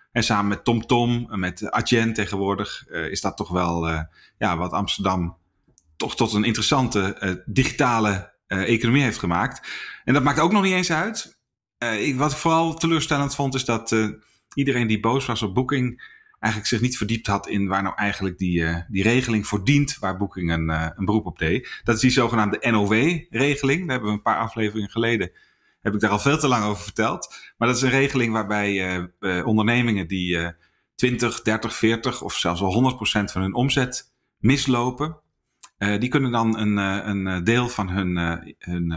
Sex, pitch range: male, 95-120 Hz